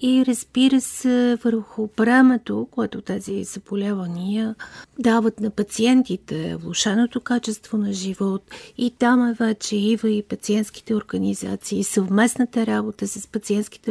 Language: Bulgarian